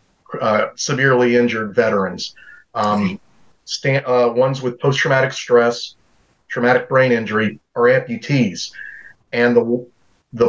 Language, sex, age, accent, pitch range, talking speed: English, male, 40-59, American, 120-140 Hz, 110 wpm